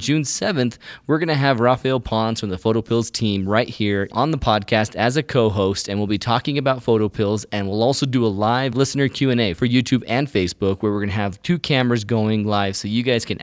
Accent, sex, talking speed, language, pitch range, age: American, male, 230 wpm, English, 105-130 Hz, 20-39